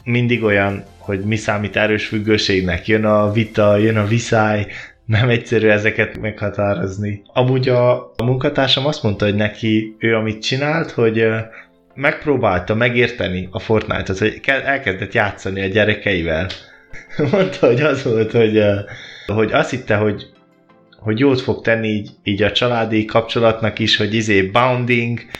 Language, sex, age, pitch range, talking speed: Hungarian, male, 20-39, 105-125 Hz, 140 wpm